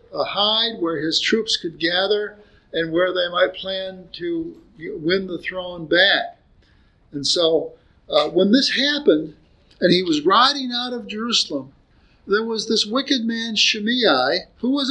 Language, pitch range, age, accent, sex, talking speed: English, 205-275 Hz, 50-69, American, male, 155 wpm